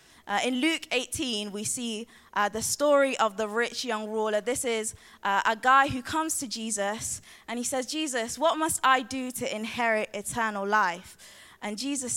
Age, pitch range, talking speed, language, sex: 20-39, 215-270 Hz, 180 wpm, English, female